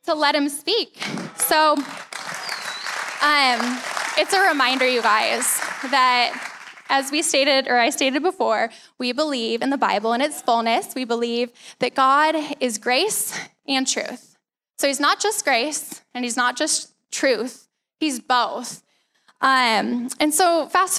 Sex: female